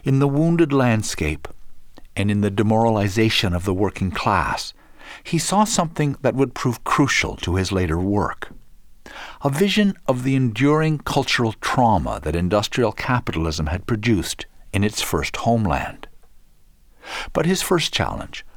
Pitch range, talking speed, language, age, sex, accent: 90-140 Hz, 140 wpm, English, 60-79, male, American